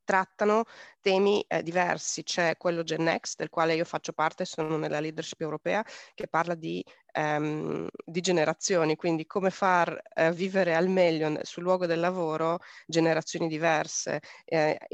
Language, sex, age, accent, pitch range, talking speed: Italian, female, 20-39, native, 160-180 Hz, 155 wpm